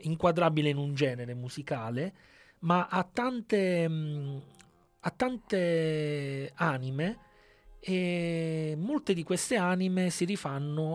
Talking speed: 105 wpm